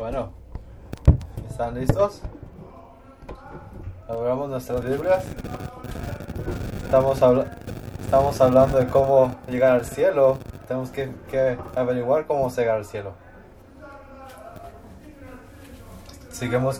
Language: English